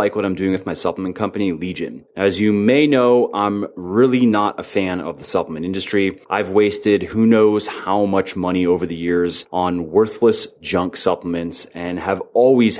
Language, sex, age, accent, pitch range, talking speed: English, male, 30-49, American, 95-120 Hz, 185 wpm